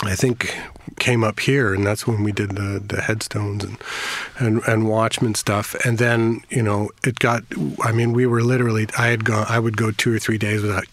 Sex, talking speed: male, 220 wpm